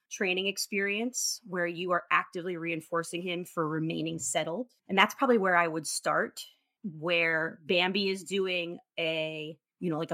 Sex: female